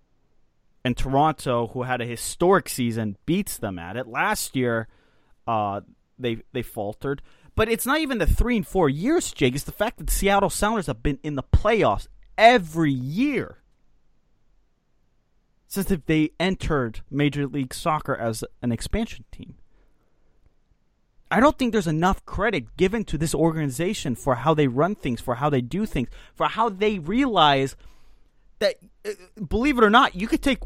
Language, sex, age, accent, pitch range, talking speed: English, male, 30-49, American, 125-195 Hz, 160 wpm